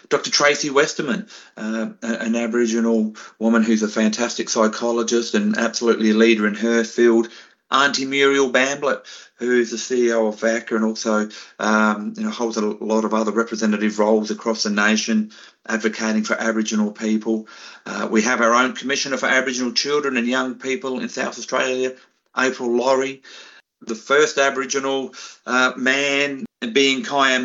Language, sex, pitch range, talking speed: English, male, 110-130 Hz, 155 wpm